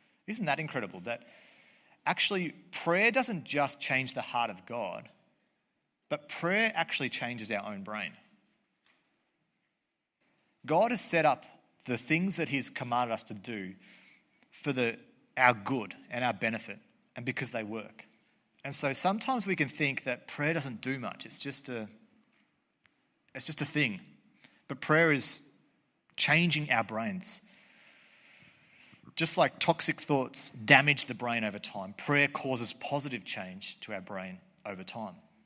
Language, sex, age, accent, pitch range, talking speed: English, male, 40-59, Australian, 120-160 Hz, 140 wpm